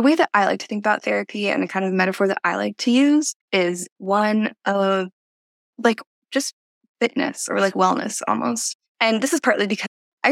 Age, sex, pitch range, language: 10-29, female, 185-240 Hz, English